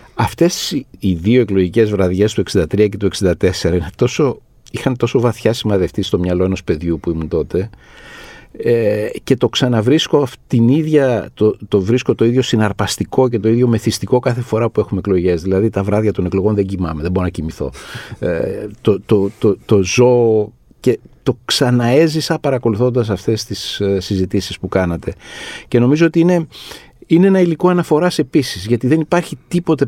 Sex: male